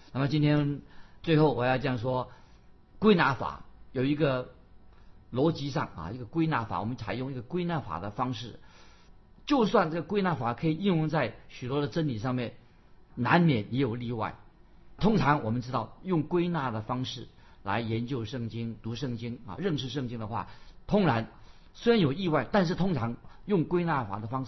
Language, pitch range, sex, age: Chinese, 110-150 Hz, male, 50-69